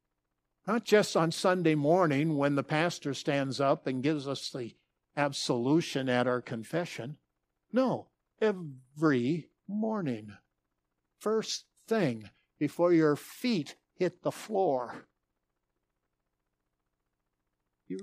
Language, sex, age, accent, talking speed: English, male, 60-79, American, 100 wpm